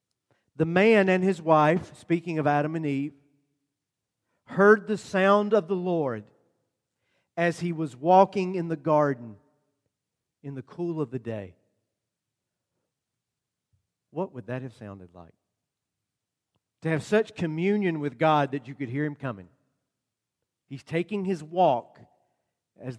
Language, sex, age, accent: English, male, 50-69, American